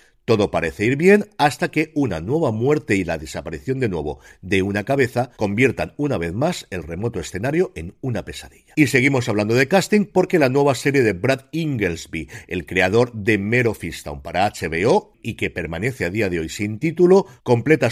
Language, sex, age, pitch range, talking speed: Spanish, male, 50-69, 100-140 Hz, 190 wpm